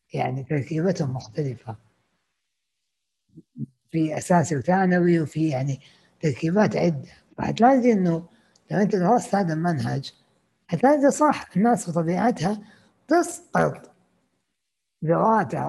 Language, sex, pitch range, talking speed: Arabic, female, 165-230 Hz, 90 wpm